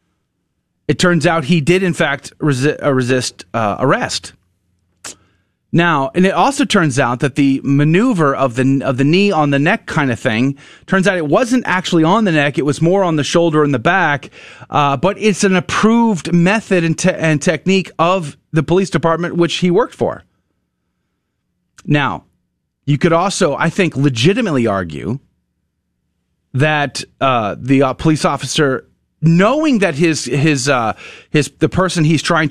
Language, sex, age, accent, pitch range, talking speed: English, male, 30-49, American, 125-180 Hz, 160 wpm